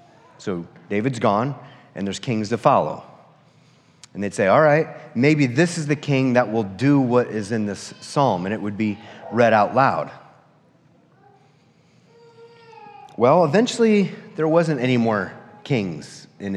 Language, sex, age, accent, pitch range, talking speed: English, male, 30-49, American, 110-150 Hz, 150 wpm